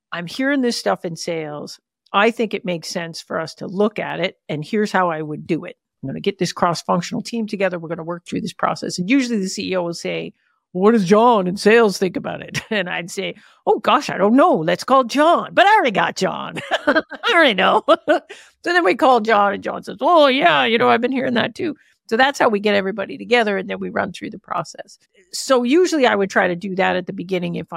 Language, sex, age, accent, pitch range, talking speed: English, female, 50-69, American, 180-235 Hz, 250 wpm